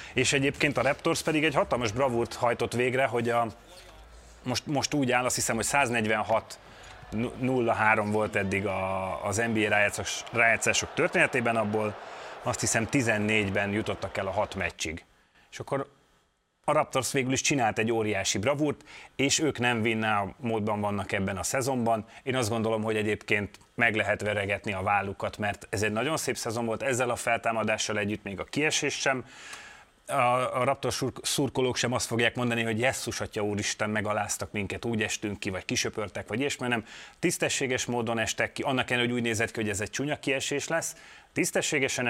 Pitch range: 105-125 Hz